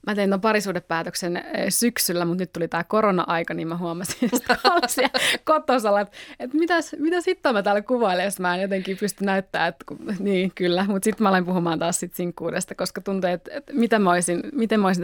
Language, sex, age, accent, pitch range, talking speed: Finnish, female, 20-39, native, 170-210 Hz, 195 wpm